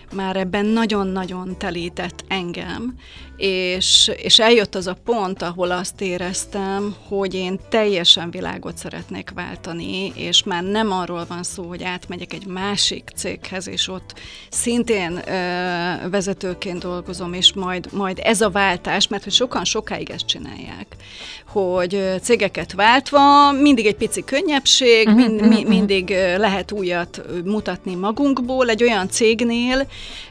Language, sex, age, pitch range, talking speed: Hungarian, female, 30-49, 180-220 Hz, 125 wpm